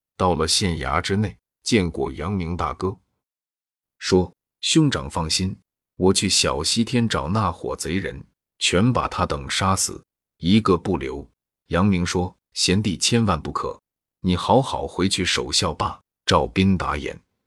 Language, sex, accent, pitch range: Chinese, male, native, 85-105 Hz